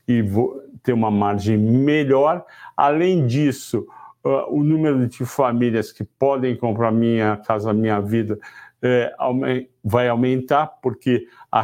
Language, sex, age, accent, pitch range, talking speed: Portuguese, male, 60-79, Brazilian, 115-140 Hz, 120 wpm